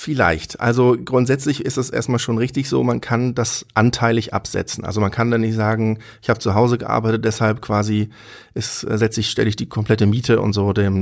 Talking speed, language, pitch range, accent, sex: 205 wpm, German, 100-115 Hz, German, male